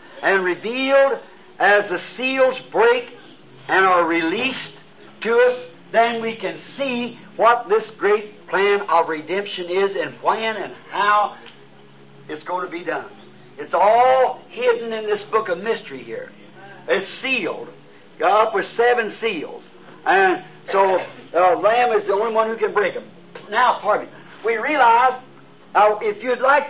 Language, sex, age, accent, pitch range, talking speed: English, male, 60-79, American, 200-260 Hz, 155 wpm